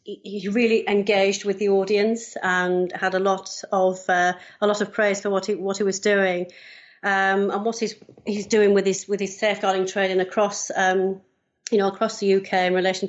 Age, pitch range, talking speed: 40-59, 190-210 Hz, 200 wpm